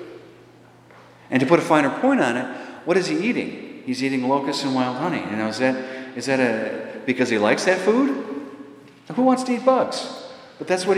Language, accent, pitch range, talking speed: English, American, 105-160 Hz, 210 wpm